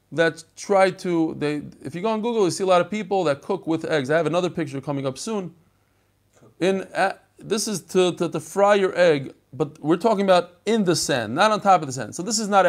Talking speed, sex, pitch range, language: 250 wpm, male, 105-165 Hz, English